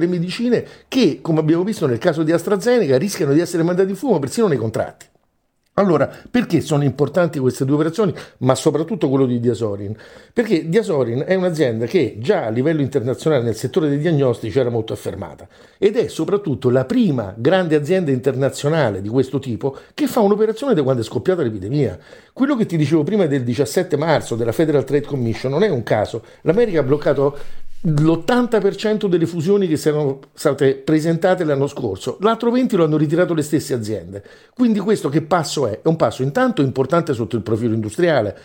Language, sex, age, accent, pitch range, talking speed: Italian, male, 60-79, native, 135-190 Hz, 185 wpm